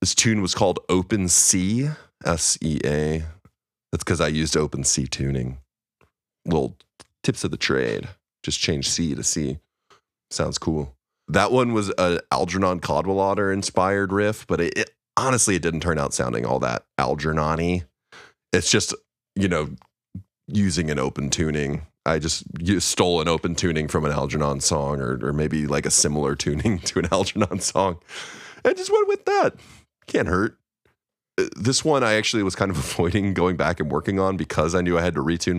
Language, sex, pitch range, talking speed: English, male, 75-105 Hz, 170 wpm